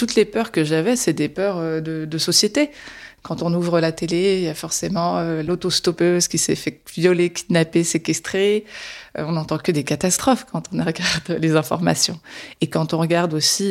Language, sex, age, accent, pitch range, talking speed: French, female, 20-39, French, 160-195 Hz, 195 wpm